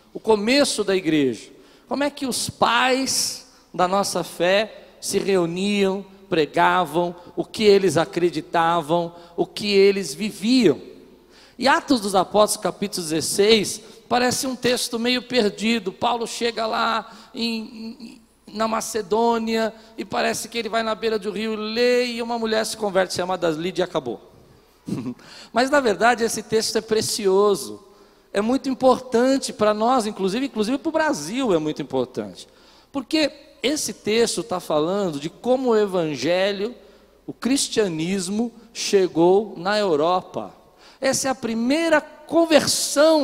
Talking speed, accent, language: 140 wpm, Brazilian, Portuguese